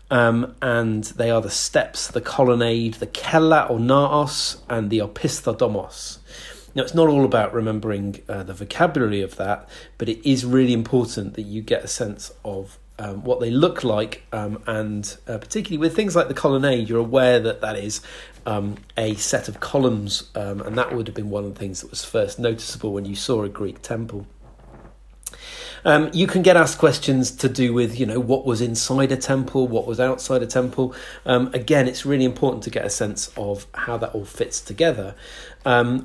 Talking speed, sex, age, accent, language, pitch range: 195 wpm, male, 40-59, British, English, 105-130 Hz